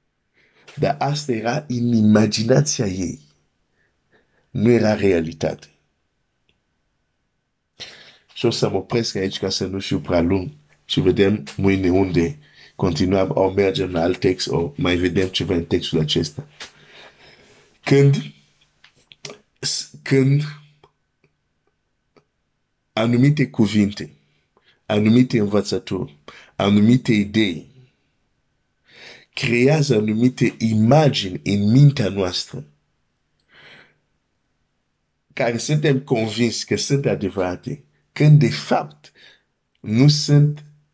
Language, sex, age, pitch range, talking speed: Romanian, male, 50-69, 95-135 Hz, 90 wpm